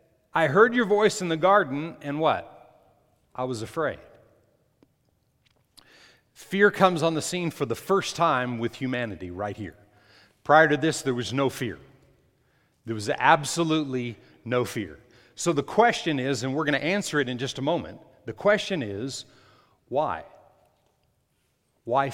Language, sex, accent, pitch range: English, male, American, 115-175 Hz